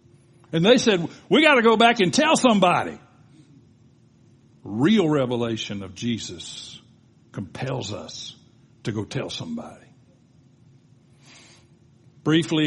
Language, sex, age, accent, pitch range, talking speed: English, male, 60-79, American, 130-180 Hz, 105 wpm